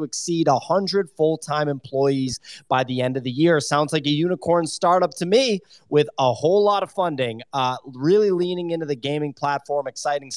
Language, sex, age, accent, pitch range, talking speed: English, male, 30-49, American, 145-180 Hz, 180 wpm